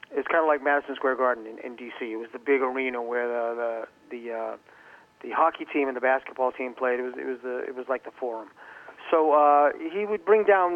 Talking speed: 245 wpm